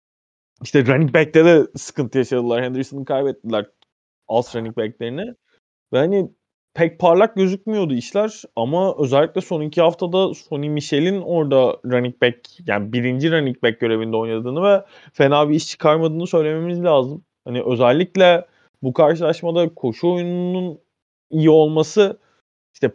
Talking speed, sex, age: 125 wpm, male, 20-39